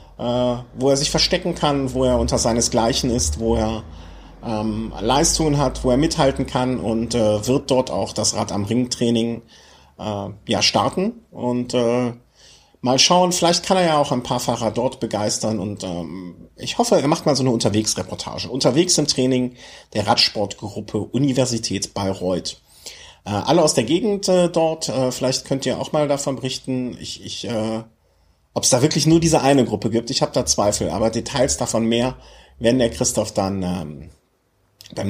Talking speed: 180 wpm